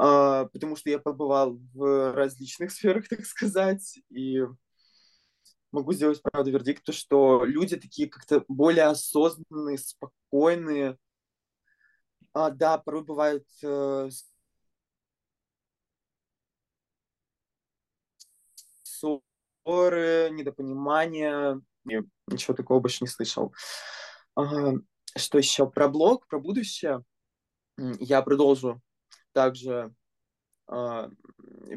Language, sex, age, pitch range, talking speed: Russian, male, 20-39, 130-150 Hz, 75 wpm